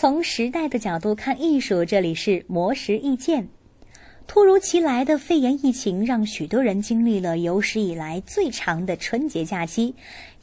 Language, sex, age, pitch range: Chinese, female, 20-39, 205-325 Hz